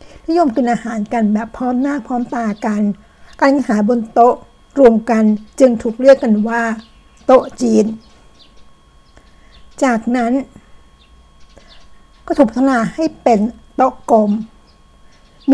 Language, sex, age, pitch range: Thai, female, 60-79, 215-255 Hz